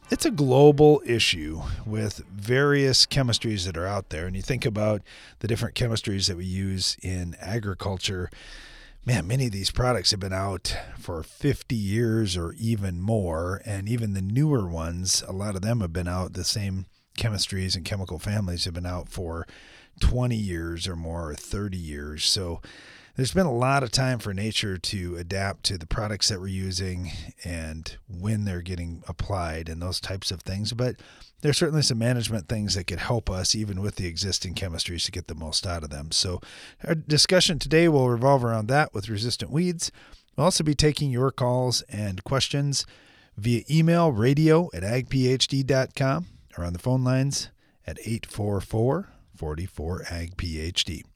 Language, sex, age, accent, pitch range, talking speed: English, male, 40-59, American, 90-125 Hz, 170 wpm